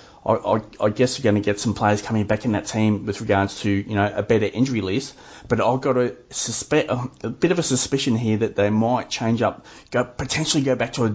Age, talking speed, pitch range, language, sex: 30-49, 235 wpm, 105-130 Hz, English, male